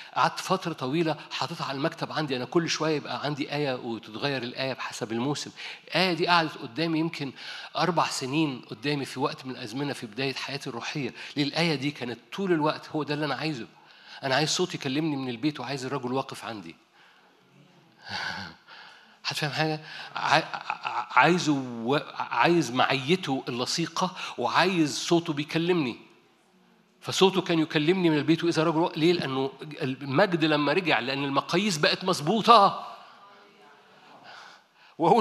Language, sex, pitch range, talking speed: Arabic, male, 130-165 Hz, 140 wpm